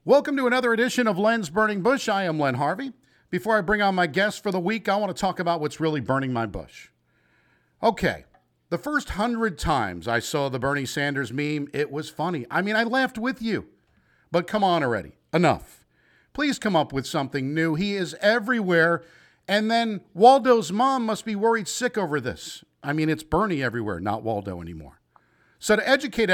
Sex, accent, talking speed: male, American, 195 wpm